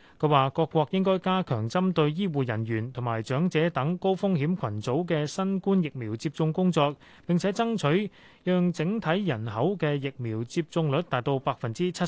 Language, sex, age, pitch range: Chinese, male, 30-49, 135-180 Hz